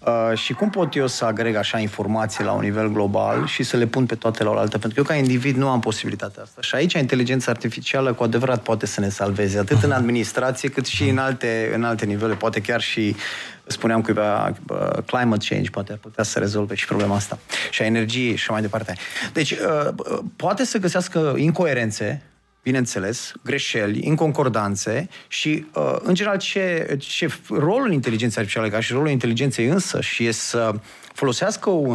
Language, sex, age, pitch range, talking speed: Romanian, male, 30-49, 115-160 Hz, 185 wpm